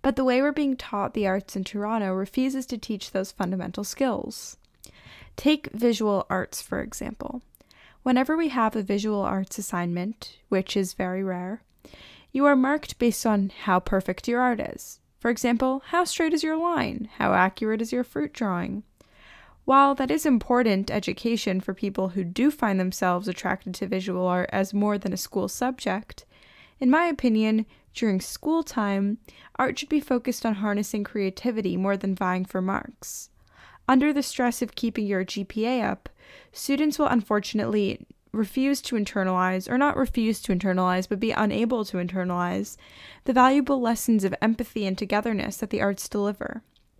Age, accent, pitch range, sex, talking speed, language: 10-29, American, 195-250 Hz, female, 165 wpm, English